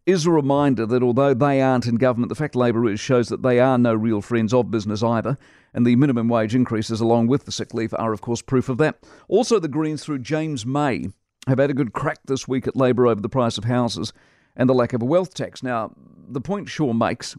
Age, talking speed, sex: 50-69, 245 wpm, male